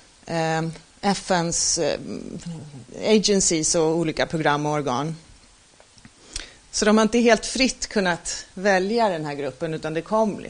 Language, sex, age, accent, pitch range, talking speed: Swedish, female, 30-49, native, 165-215 Hz, 110 wpm